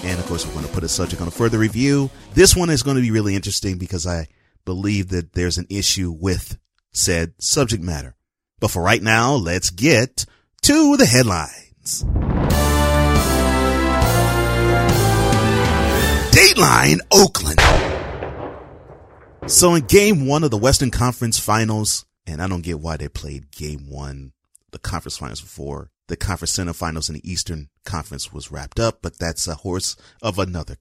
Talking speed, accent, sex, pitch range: 160 wpm, American, male, 85-120 Hz